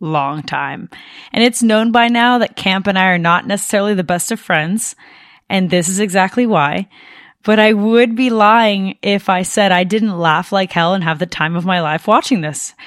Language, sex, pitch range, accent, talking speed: English, female, 185-250 Hz, American, 210 wpm